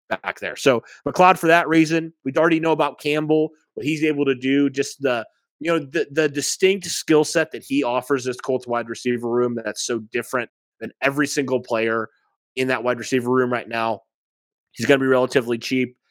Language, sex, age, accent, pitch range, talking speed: English, male, 30-49, American, 120-145 Hz, 200 wpm